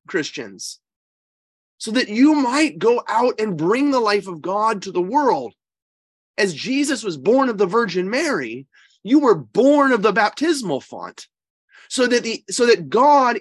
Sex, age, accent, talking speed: male, 30-49, American, 165 wpm